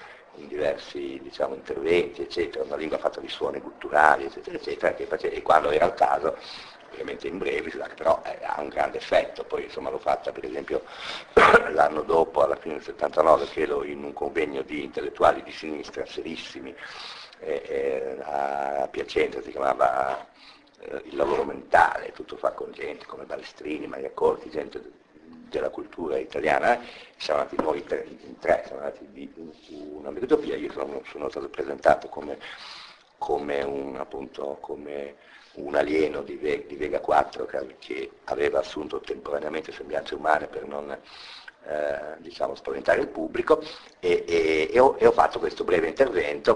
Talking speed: 165 wpm